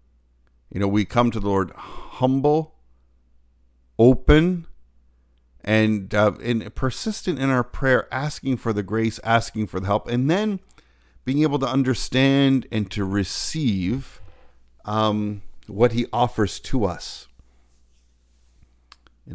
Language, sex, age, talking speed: English, male, 50-69, 125 wpm